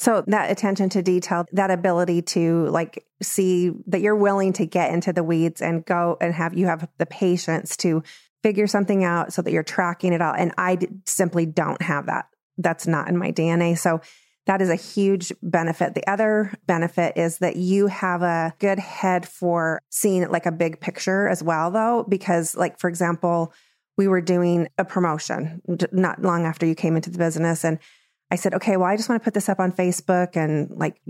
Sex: female